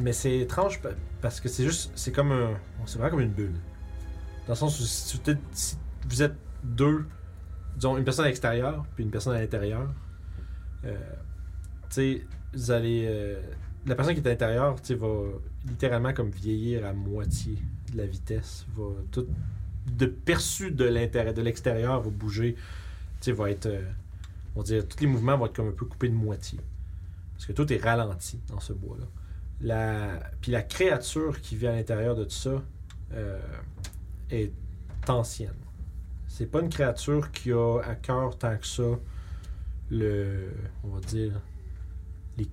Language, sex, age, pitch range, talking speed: French, male, 30-49, 85-120 Hz, 170 wpm